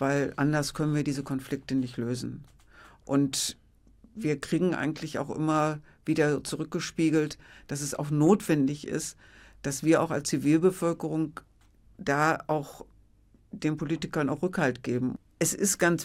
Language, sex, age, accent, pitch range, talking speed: German, female, 60-79, German, 140-170 Hz, 135 wpm